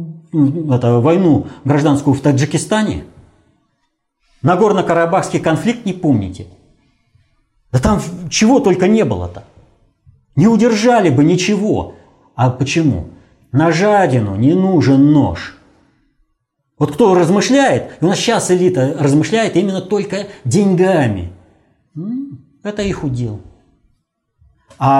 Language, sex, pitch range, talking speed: Russian, male, 110-175 Hz, 95 wpm